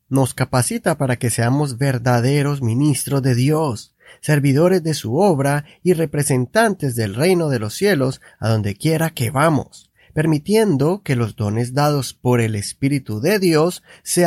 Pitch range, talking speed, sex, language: 120-170 Hz, 150 wpm, male, Spanish